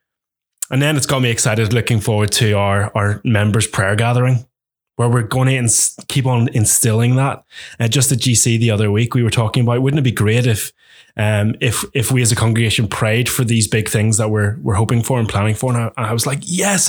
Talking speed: 240 wpm